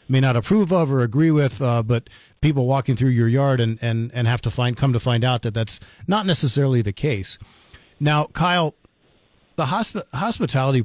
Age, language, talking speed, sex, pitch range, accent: 40-59, English, 190 wpm, male, 120-145 Hz, American